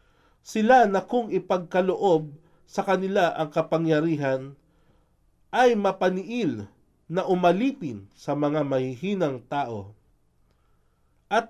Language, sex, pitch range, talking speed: Filipino, male, 140-205 Hz, 90 wpm